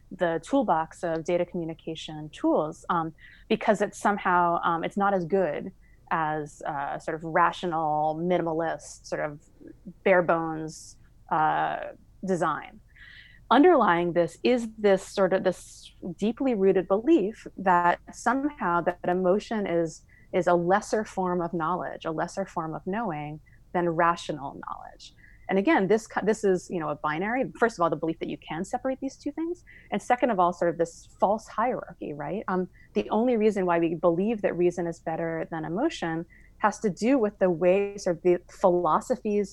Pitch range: 170-205 Hz